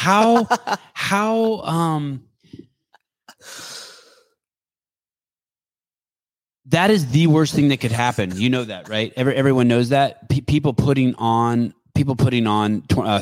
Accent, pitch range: American, 95-130 Hz